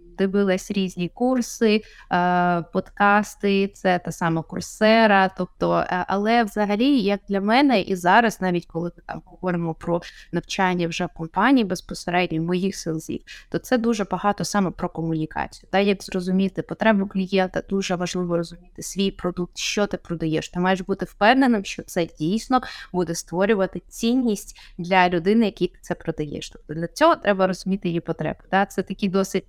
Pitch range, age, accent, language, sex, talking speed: 180-215 Hz, 20-39, native, Ukrainian, female, 150 wpm